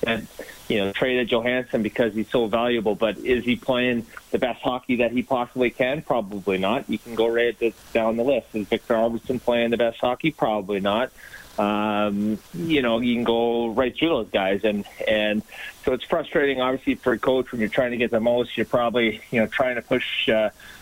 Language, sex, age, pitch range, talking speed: English, male, 30-49, 105-125 Hz, 215 wpm